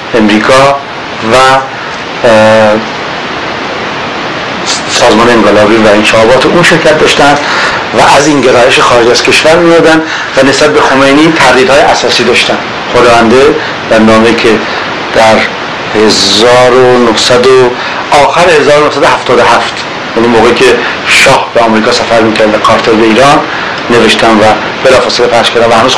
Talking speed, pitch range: 120 wpm, 115-140 Hz